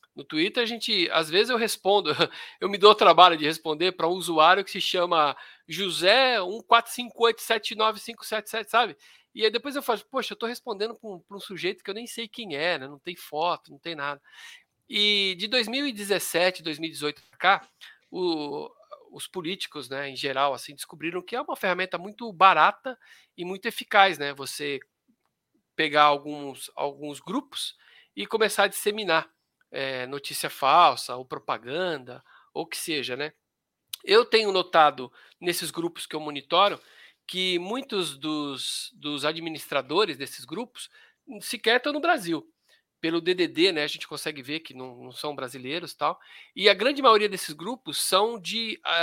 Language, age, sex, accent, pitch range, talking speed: Portuguese, 50-69, male, Brazilian, 150-230 Hz, 165 wpm